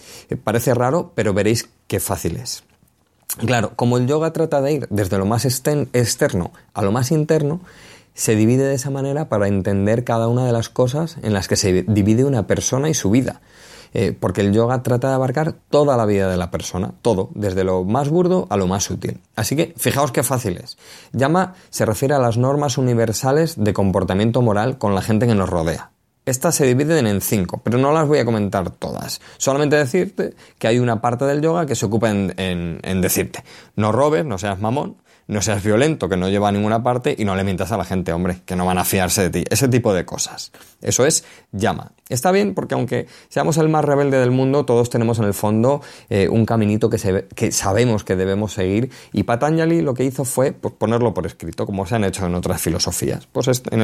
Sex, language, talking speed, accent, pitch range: male, Spanish, 215 wpm, Spanish, 100-135 Hz